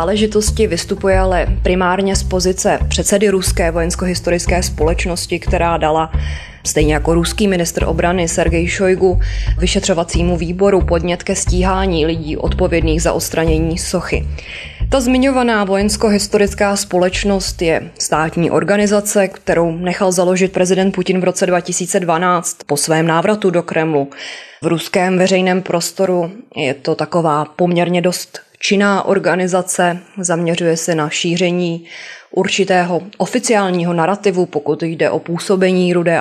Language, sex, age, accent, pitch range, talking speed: Czech, female, 20-39, native, 165-190 Hz, 120 wpm